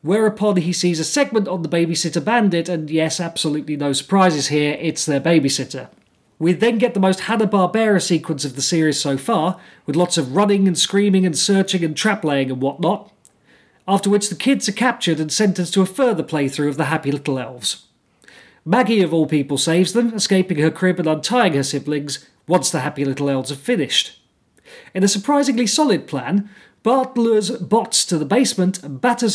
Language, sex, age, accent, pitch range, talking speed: English, male, 40-59, British, 155-210 Hz, 190 wpm